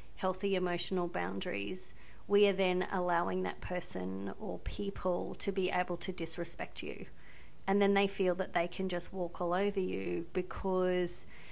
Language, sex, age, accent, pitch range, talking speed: English, female, 30-49, Australian, 170-190 Hz, 155 wpm